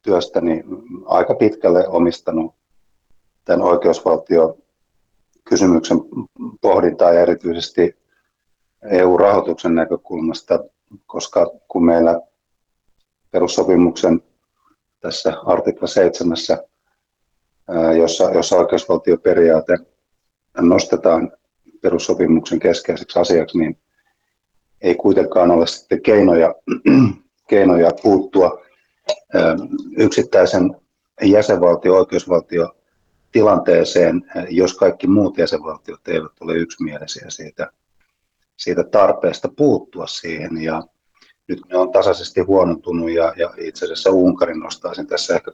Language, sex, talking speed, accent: Finnish, male, 85 wpm, native